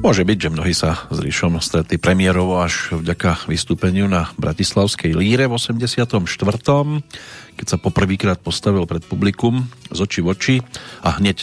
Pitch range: 85-105 Hz